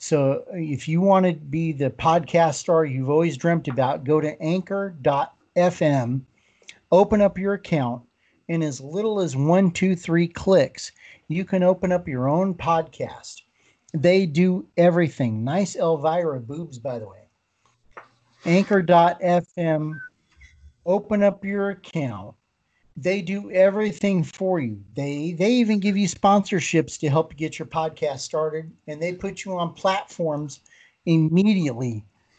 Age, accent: 50-69, American